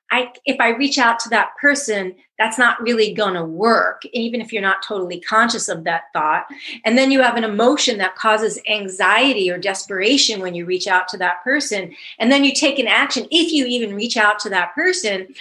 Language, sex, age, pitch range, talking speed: English, female, 40-59, 195-255 Hz, 215 wpm